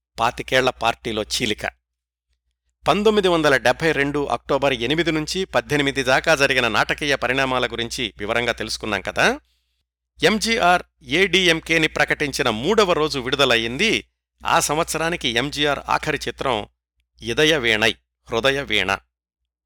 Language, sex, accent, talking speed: Telugu, male, native, 105 wpm